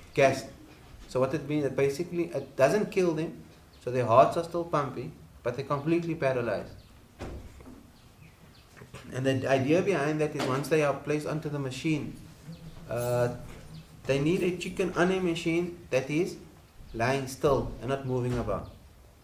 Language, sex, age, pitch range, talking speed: English, male, 30-49, 125-165 Hz, 155 wpm